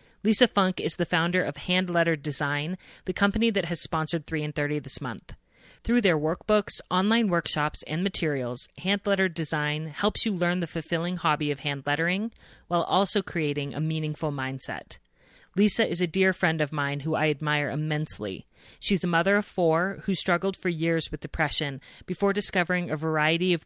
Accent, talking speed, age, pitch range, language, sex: American, 175 wpm, 30-49, 150-185 Hz, English, female